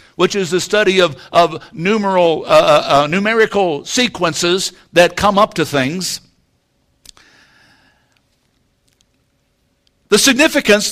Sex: male